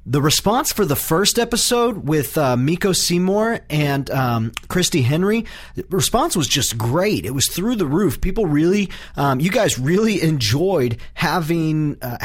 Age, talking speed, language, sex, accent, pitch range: 40-59, 160 wpm, English, male, American, 135-175 Hz